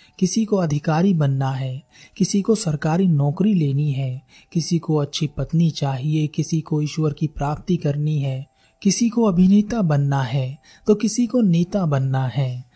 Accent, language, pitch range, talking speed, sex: native, Hindi, 145-195 Hz, 160 wpm, male